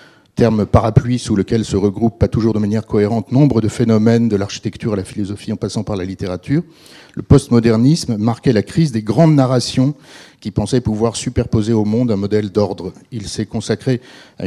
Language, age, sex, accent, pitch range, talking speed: French, 50-69, male, French, 105-130 Hz, 185 wpm